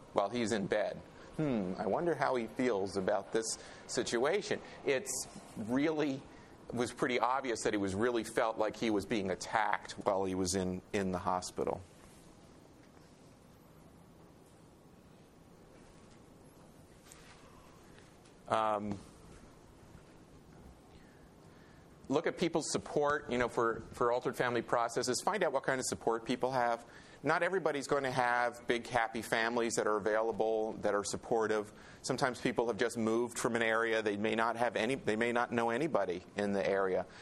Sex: male